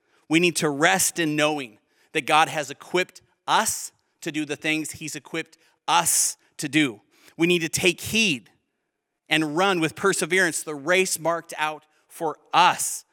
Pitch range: 145-175 Hz